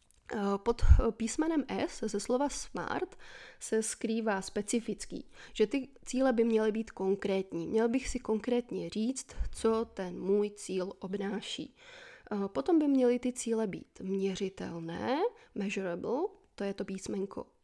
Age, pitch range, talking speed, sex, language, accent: 20-39, 195-240 Hz, 130 wpm, female, Czech, native